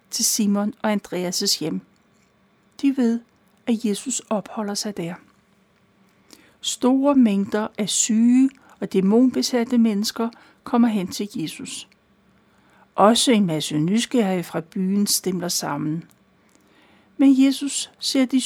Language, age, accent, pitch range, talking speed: Danish, 60-79, native, 200-250 Hz, 115 wpm